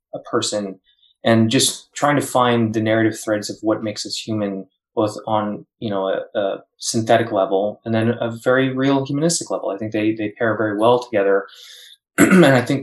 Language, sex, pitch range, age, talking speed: English, male, 105-120 Hz, 20-39, 190 wpm